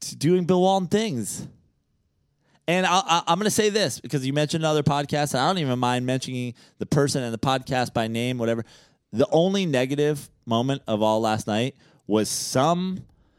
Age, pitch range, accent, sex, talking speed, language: 20-39, 110-145 Hz, American, male, 185 wpm, English